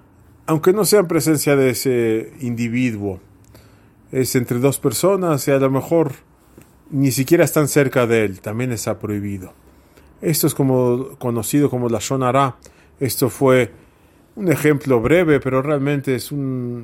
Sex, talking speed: male, 150 wpm